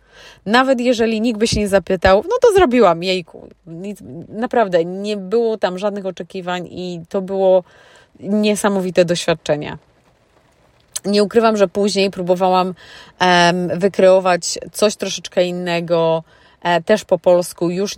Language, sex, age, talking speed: Polish, female, 30-49, 115 wpm